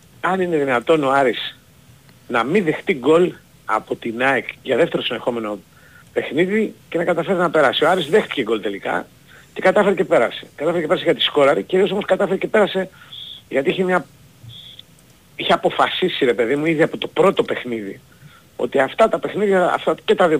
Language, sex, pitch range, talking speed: Greek, male, 130-190 Hz, 180 wpm